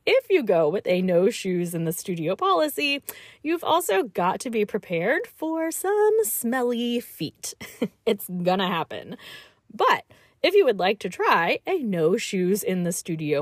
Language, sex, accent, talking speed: English, female, American, 130 wpm